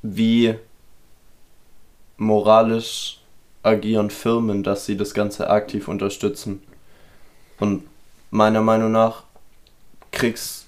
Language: German